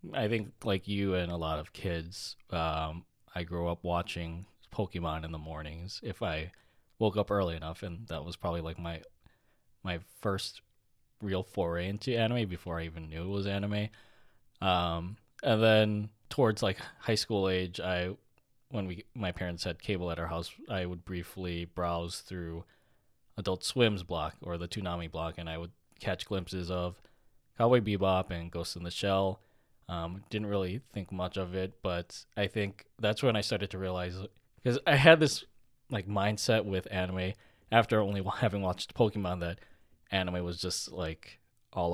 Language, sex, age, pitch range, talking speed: English, male, 20-39, 85-105 Hz, 175 wpm